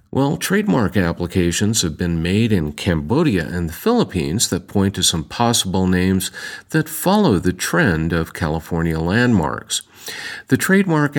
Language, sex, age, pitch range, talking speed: English, male, 50-69, 85-115 Hz, 140 wpm